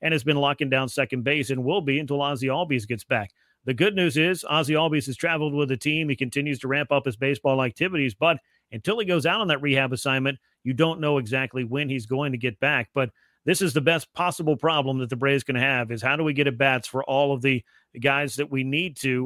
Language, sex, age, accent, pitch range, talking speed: English, male, 40-59, American, 135-160 Hz, 250 wpm